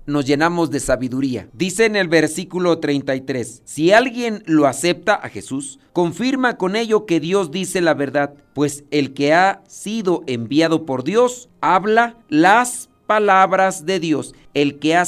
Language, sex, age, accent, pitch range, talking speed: Spanish, male, 50-69, Mexican, 145-190 Hz, 155 wpm